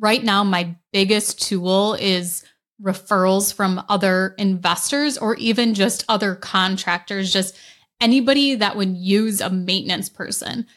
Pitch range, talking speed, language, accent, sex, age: 185-210 Hz, 130 wpm, English, American, female, 20-39